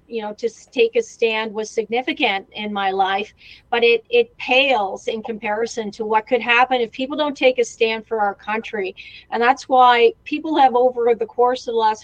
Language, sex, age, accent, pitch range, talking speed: English, female, 40-59, American, 230-280 Hz, 205 wpm